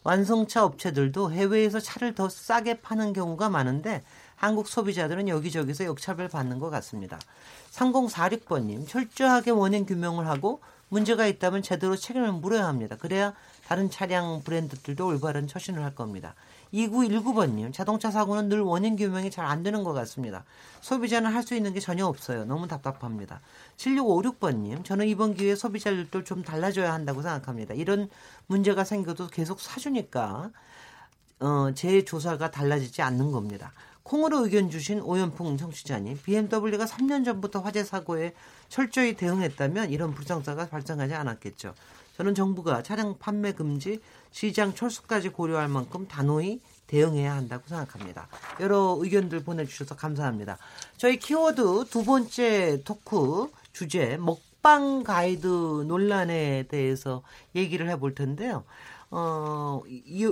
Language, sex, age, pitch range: Korean, male, 40-59, 145-210 Hz